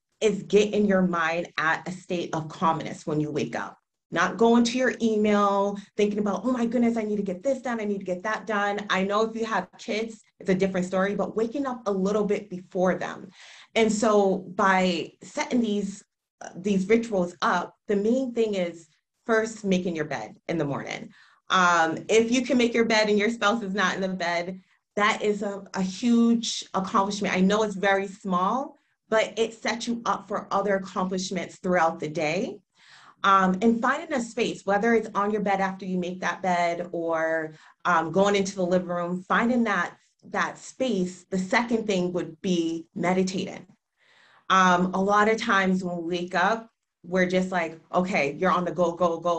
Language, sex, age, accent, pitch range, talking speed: English, female, 30-49, American, 180-215 Hz, 195 wpm